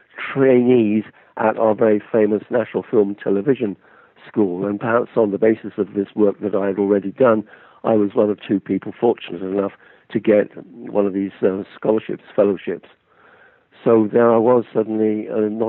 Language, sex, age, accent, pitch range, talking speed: English, male, 50-69, British, 100-115 Hz, 170 wpm